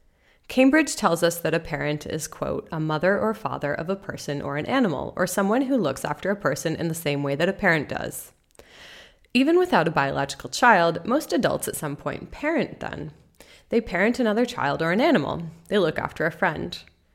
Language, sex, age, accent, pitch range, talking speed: English, female, 30-49, American, 155-230 Hz, 200 wpm